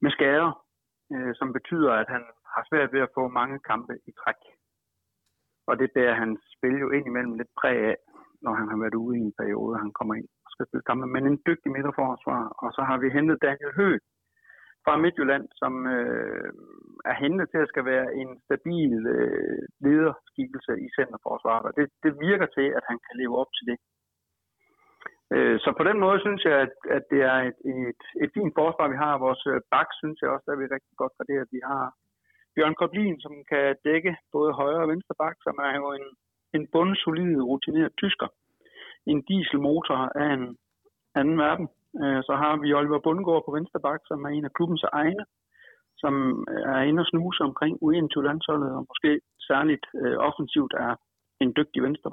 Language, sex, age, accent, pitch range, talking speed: Danish, male, 60-79, native, 130-165 Hz, 190 wpm